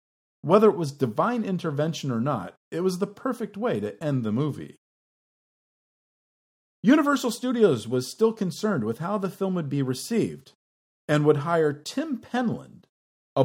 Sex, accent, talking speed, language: male, American, 150 wpm, English